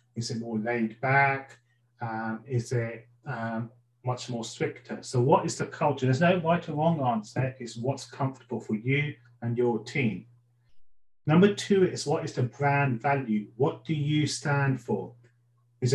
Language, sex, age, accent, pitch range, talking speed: English, male, 40-59, British, 120-140 Hz, 170 wpm